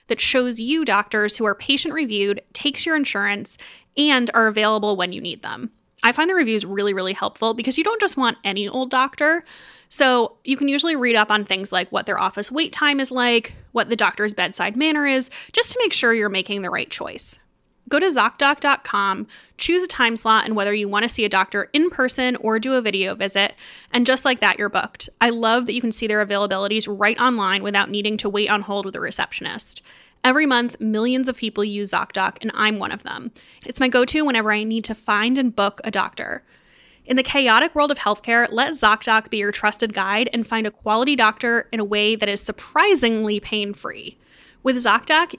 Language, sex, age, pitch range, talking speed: English, female, 20-39, 210-260 Hz, 210 wpm